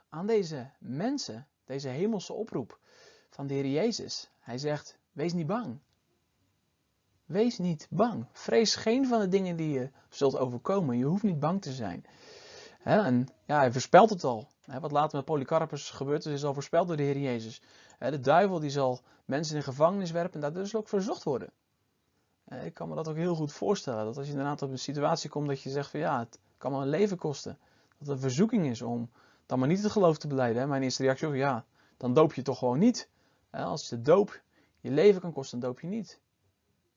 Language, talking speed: Dutch, 210 wpm